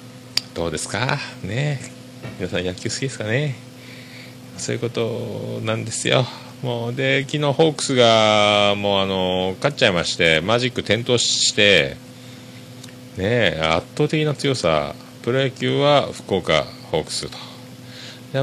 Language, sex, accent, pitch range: Japanese, male, native, 110-155 Hz